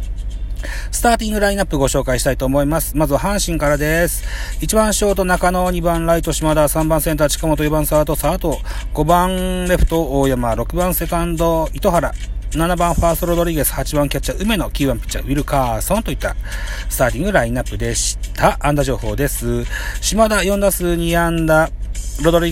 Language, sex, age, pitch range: Japanese, male, 30-49, 125-170 Hz